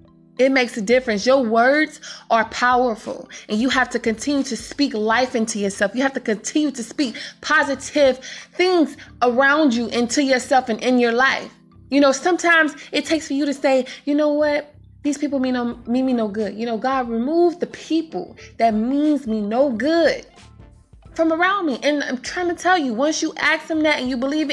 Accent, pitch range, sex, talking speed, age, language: American, 245-300 Hz, female, 200 wpm, 20-39, English